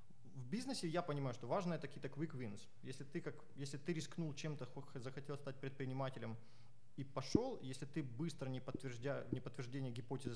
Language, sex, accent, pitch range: Russian, male, native, 125-150 Hz